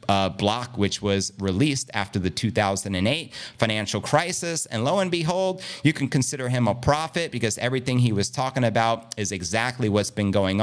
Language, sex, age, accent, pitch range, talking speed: English, male, 30-49, American, 100-125 Hz, 175 wpm